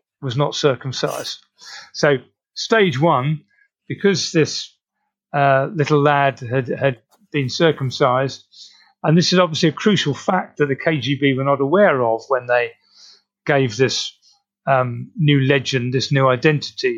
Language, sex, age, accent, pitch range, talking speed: English, male, 40-59, British, 130-160 Hz, 140 wpm